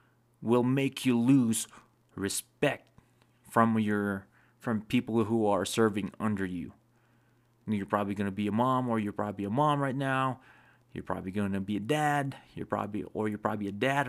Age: 30-49